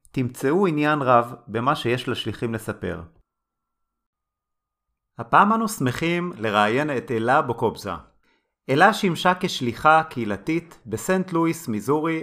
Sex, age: male, 30-49